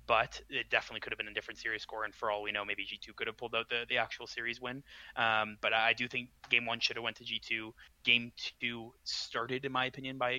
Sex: male